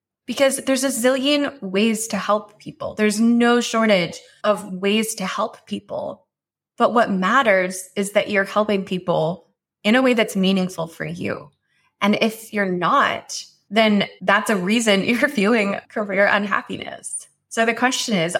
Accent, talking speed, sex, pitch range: American, 155 wpm, female, 185-225 Hz